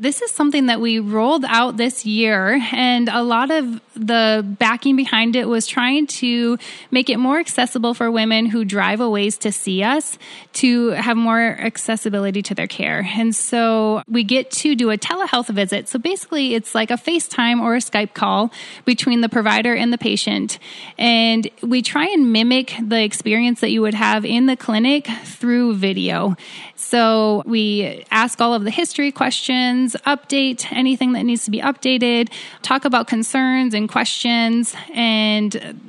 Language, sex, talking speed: English, female, 170 wpm